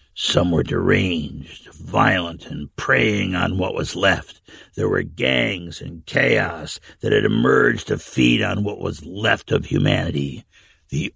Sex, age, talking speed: male, 60-79, 145 wpm